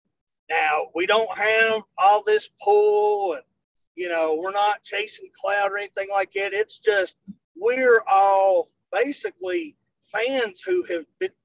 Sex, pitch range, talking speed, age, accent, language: male, 170-235 Hz, 140 wpm, 40-59, American, English